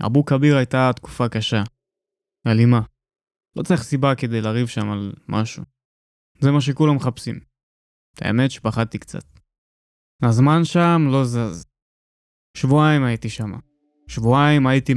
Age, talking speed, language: 20-39, 120 wpm, Hebrew